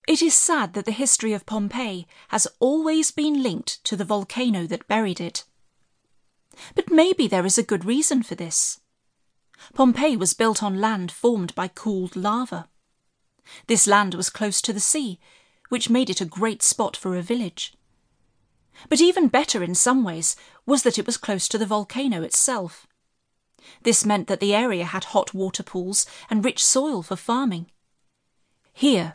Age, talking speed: 30-49, 170 wpm